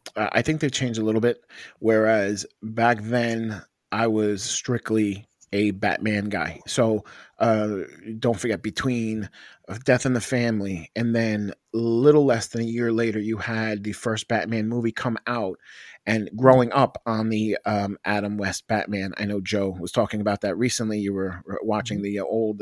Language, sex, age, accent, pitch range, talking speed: English, male, 30-49, American, 100-120 Hz, 170 wpm